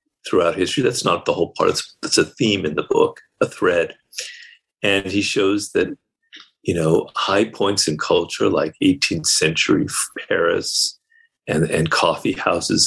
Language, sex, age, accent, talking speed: English, male, 50-69, American, 155 wpm